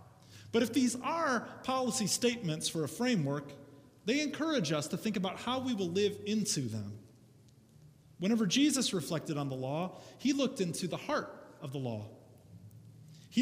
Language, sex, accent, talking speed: English, male, American, 160 wpm